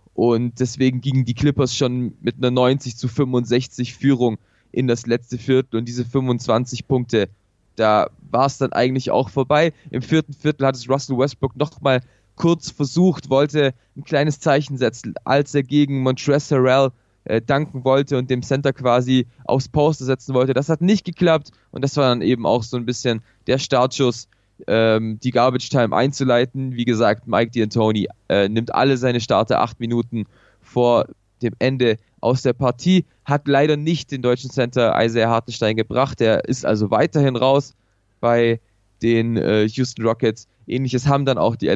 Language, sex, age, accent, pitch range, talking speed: German, male, 20-39, German, 115-135 Hz, 170 wpm